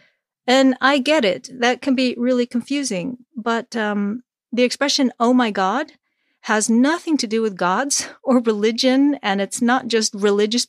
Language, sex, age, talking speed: English, female, 50-69, 165 wpm